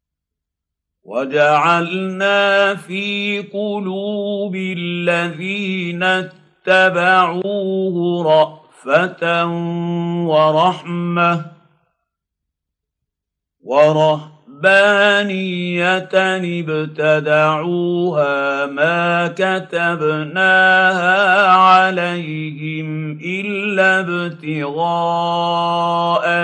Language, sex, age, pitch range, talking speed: Arabic, male, 50-69, 155-190 Hz, 30 wpm